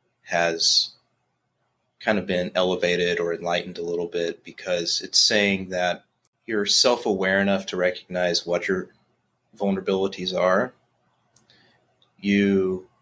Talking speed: 110 wpm